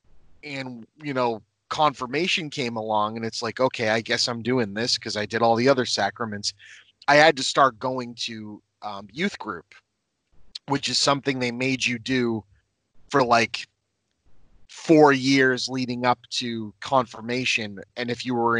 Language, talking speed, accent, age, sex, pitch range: English, 160 wpm, American, 30-49, male, 110-135 Hz